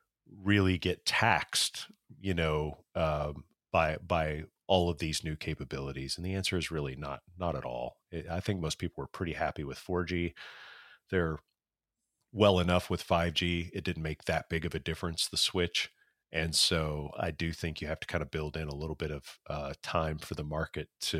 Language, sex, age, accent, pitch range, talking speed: English, male, 40-59, American, 75-85 Hz, 195 wpm